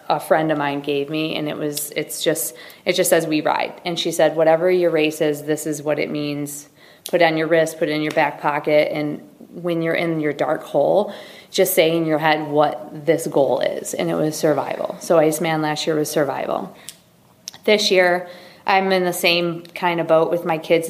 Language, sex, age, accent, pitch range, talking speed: English, female, 20-39, American, 150-170 Hz, 220 wpm